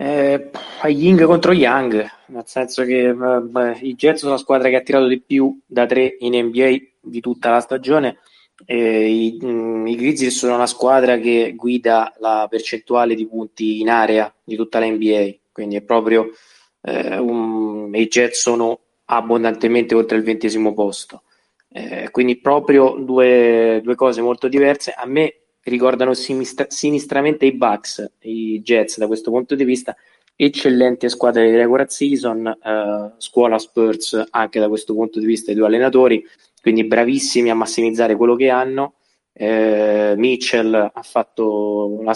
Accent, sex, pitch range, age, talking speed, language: native, male, 110-130 Hz, 20-39, 160 wpm, Italian